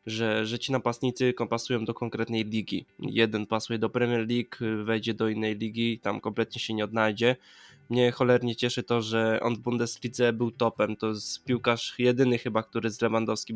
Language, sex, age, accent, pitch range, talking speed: Polish, male, 20-39, native, 110-120 Hz, 175 wpm